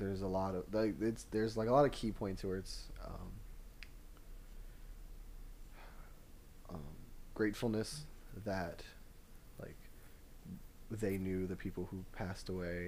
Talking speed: 125 wpm